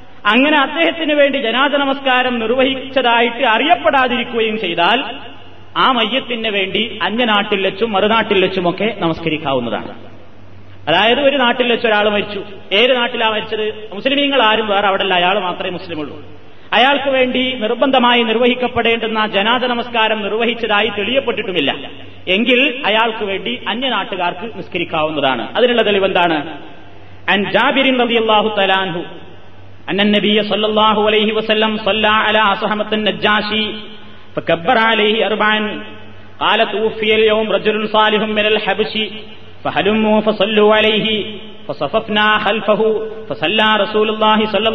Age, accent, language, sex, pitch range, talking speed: 30-49, native, Malayalam, male, 195-235 Hz, 65 wpm